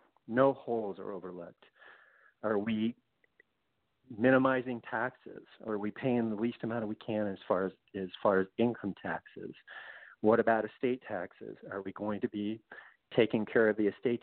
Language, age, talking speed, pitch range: English, 50-69, 165 wpm, 105-130 Hz